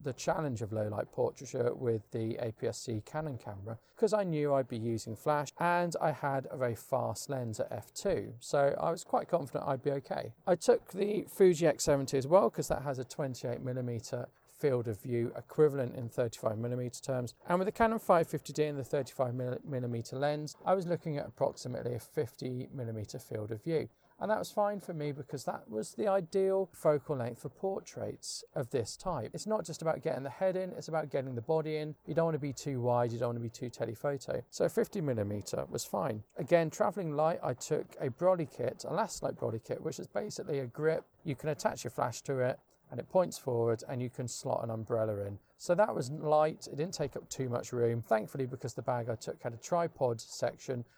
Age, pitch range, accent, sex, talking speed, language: 40-59, 120-160 Hz, British, male, 215 wpm, English